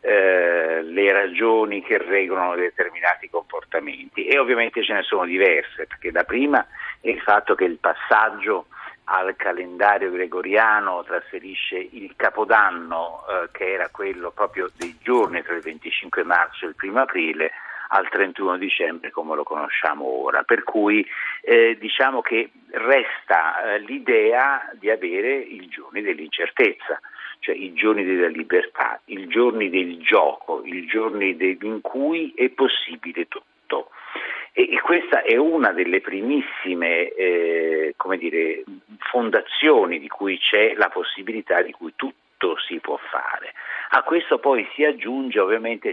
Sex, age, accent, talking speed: male, 50-69, native, 135 wpm